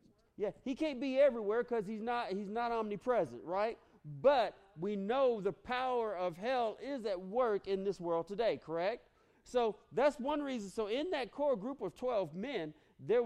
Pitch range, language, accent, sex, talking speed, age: 175-230 Hz, English, American, male, 180 wpm, 40-59